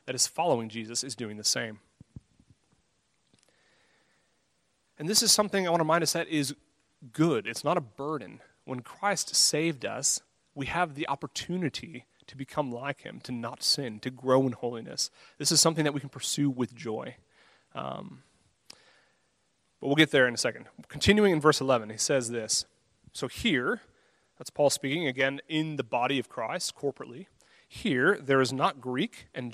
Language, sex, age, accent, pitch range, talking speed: English, male, 30-49, American, 125-160 Hz, 175 wpm